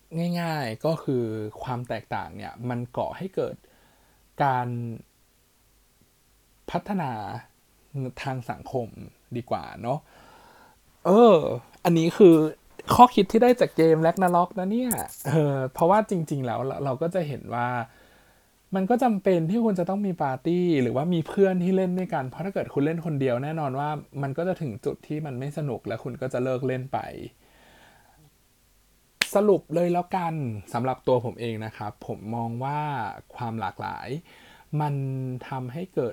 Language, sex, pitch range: Thai, male, 120-165 Hz